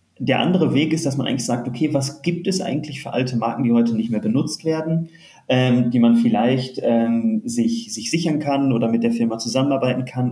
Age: 30-49